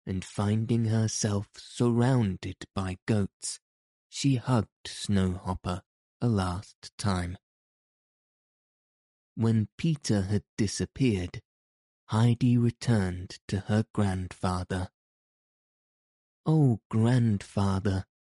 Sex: male